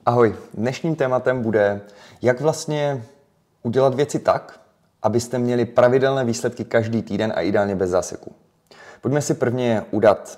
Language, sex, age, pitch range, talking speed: Czech, male, 20-39, 110-140 Hz, 135 wpm